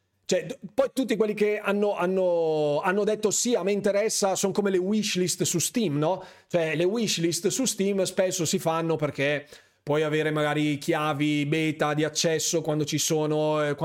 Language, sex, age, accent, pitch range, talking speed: Italian, male, 30-49, native, 150-185 Hz, 165 wpm